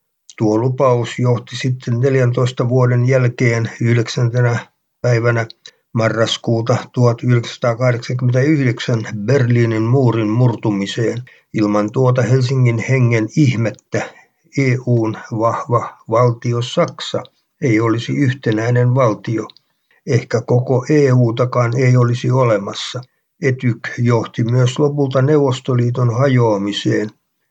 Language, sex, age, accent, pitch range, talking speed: Finnish, male, 60-79, native, 115-130 Hz, 85 wpm